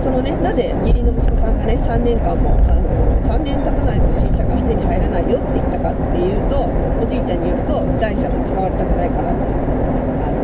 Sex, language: female, Japanese